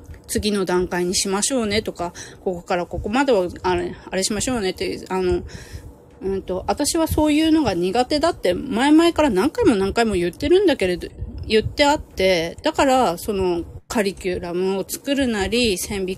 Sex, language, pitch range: female, Japanese, 175-220 Hz